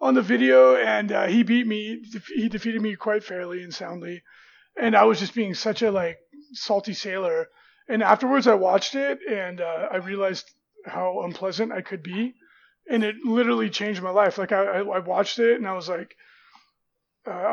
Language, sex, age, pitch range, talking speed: English, male, 30-49, 190-230 Hz, 190 wpm